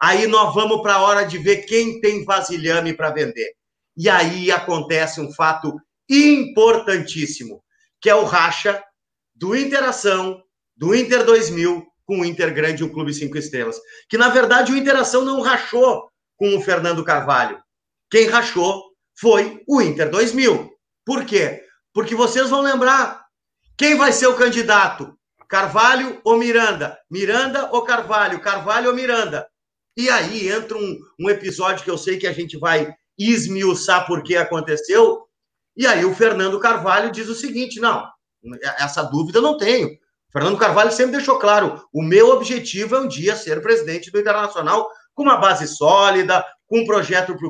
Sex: male